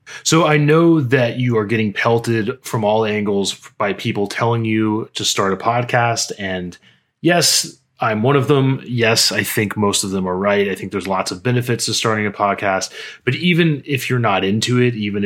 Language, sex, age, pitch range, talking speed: English, male, 20-39, 100-120 Hz, 200 wpm